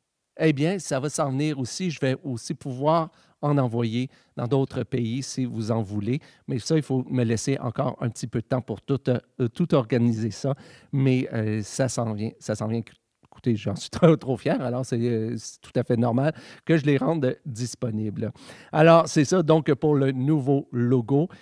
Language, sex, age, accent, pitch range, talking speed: French, male, 50-69, Canadian, 120-155 Hz, 200 wpm